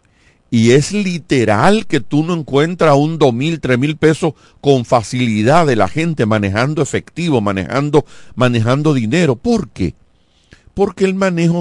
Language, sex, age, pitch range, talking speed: Spanish, male, 50-69, 110-155 Hz, 140 wpm